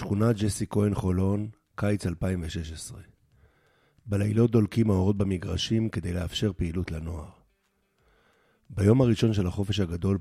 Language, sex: Hebrew, male